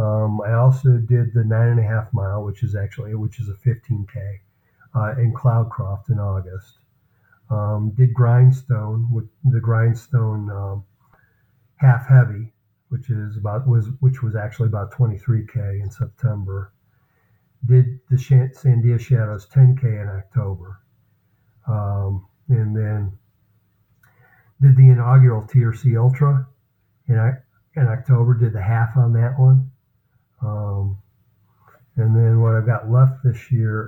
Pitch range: 105-125 Hz